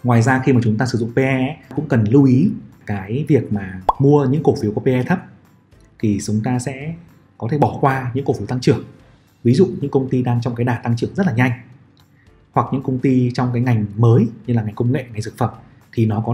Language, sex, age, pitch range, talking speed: Vietnamese, male, 20-39, 115-140 Hz, 255 wpm